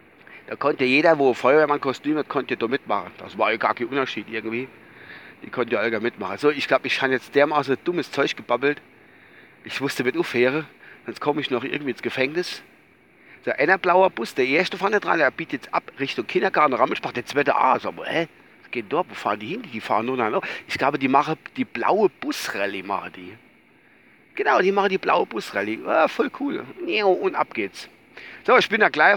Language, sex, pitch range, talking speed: German, male, 140-230 Hz, 210 wpm